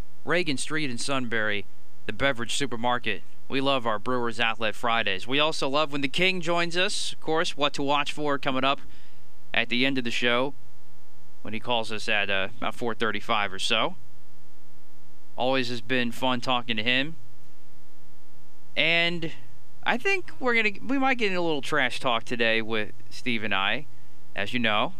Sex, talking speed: male, 175 wpm